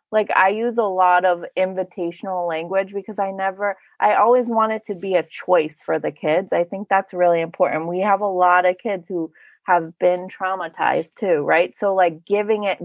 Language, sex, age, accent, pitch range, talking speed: English, female, 30-49, American, 180-235 Hz, 200 wpm